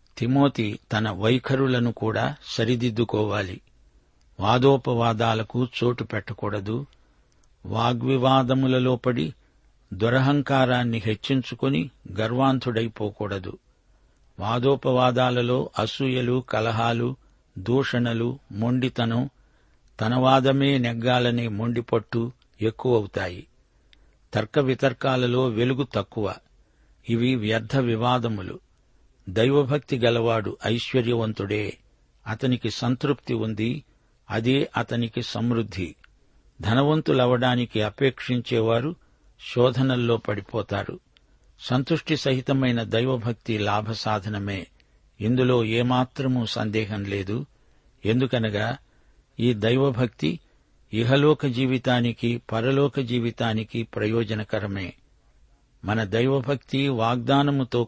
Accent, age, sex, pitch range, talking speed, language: native, 50-69, male, 110-130 Hz, 65 wpm, Telugu